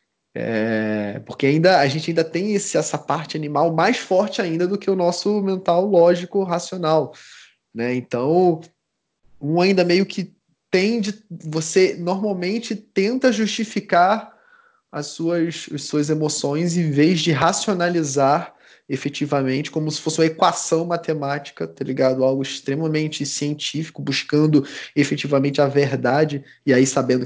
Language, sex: Portuguese, male